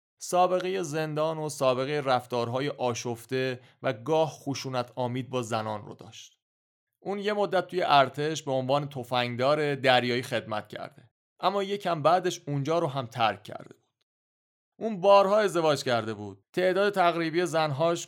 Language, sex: English, male